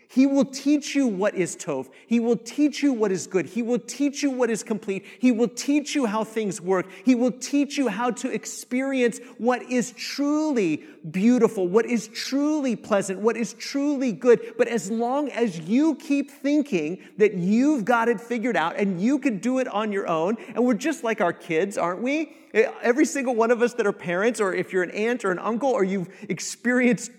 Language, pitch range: English, 205-270 Hz